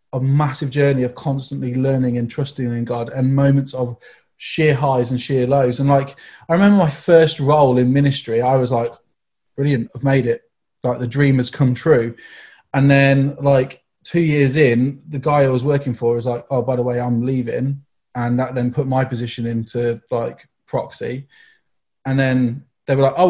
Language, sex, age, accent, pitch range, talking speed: English, male, 20-39, British, 125-150 Hz, 195 wpm